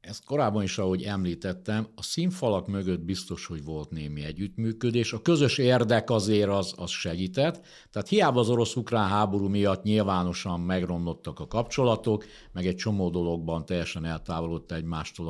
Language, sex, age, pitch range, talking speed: Hungarian, male, 60-79, 90-115 Hz, 145 wpm